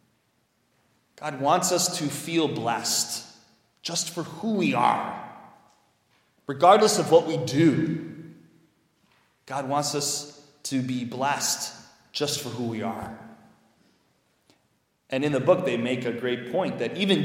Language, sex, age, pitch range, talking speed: English, male, 30-49, 150-230 Hz, 130 wpm